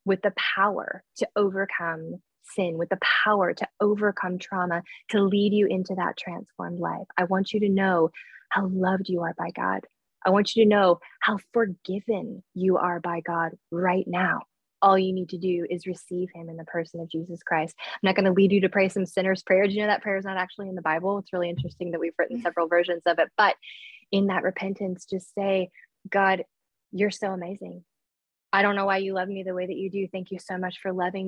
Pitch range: 180-200 Hz